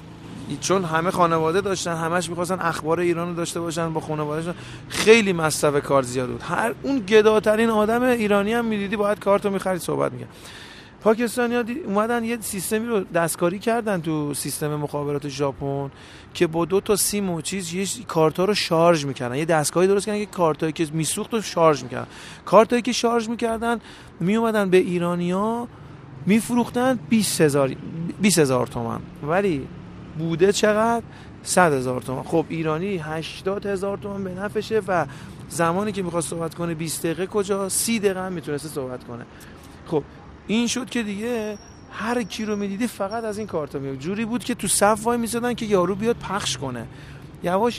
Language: Persian